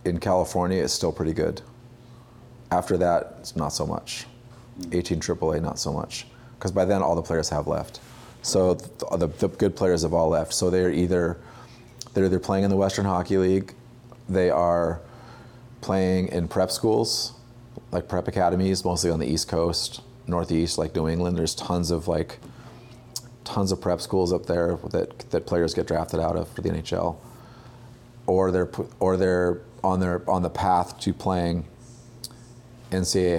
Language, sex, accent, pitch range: English, male, American, 85-120 Hz